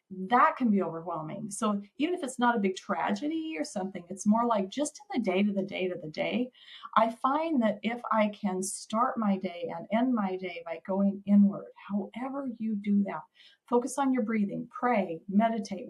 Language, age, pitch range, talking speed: English, 40-59, 195-245 Hz, 200 wpm